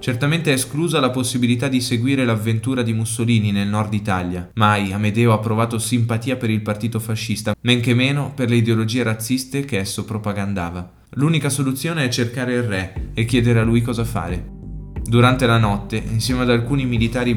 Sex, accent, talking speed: male, native, 175 wpm